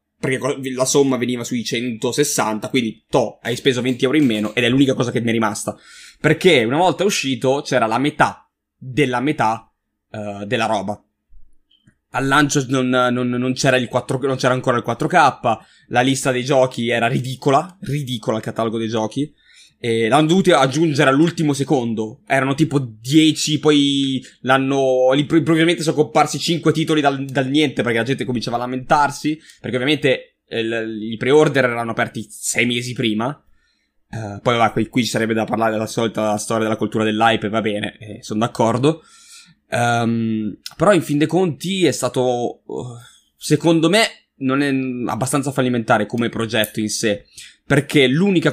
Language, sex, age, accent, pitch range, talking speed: Italian, male, 20-39, native, 110-140 Hz, 160 wpm